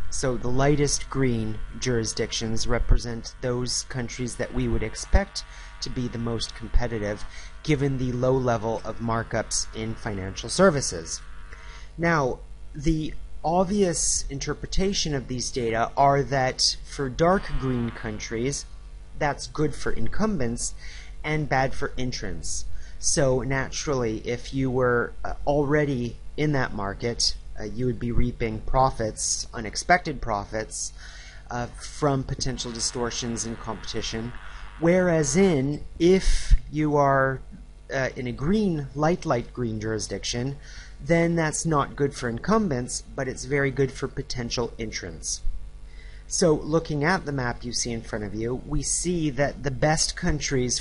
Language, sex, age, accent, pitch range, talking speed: English, male, 30-49, American, 110-145 Hz, 130 wpm